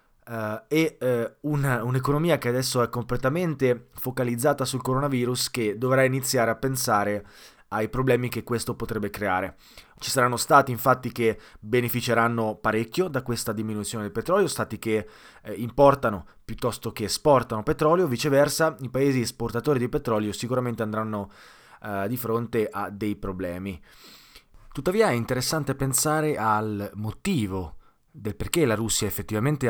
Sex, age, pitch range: male, 20-39, 105-130 Hz